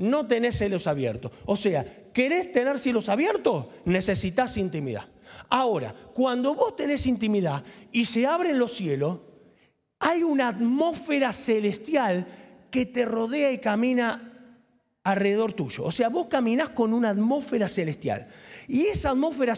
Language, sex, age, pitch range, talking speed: Spanish, male, 40-59, 205-285 Hz, 135 wpm